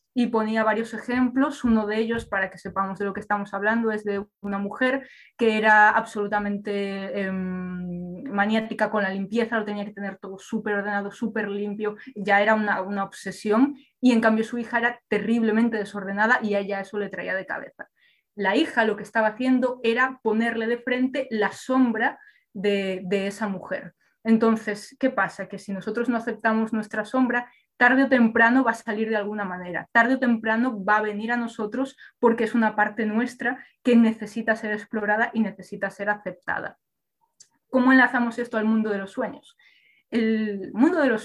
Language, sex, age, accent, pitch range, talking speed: Spanish, female, 20-39, Spanish, 205-245 Hz, 180 wpm